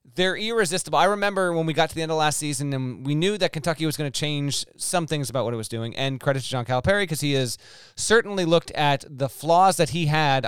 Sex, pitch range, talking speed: male, 125-155 Hz, 260 wpm